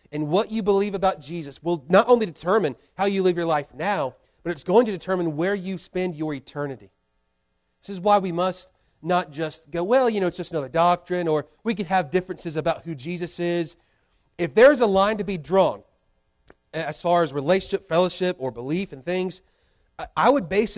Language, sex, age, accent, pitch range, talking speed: English, male, 40-59, American, 155-200 Hz, 200 wpm